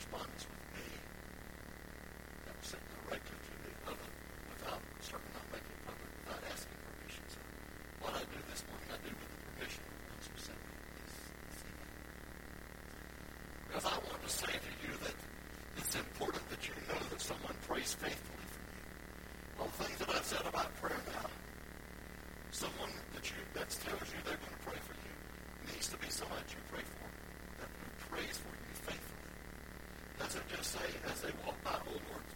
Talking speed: 170 wpm